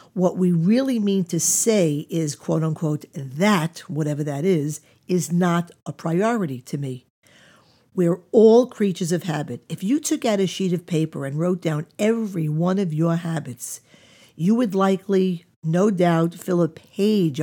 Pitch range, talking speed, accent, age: 165-205 Hz, 165 wpm, American, 50-69